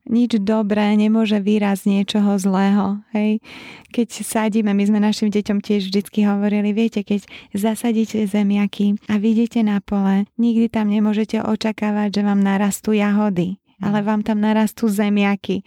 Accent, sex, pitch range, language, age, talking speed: native, female, 200-220 Hz, Czech, 20-39, 145 wpm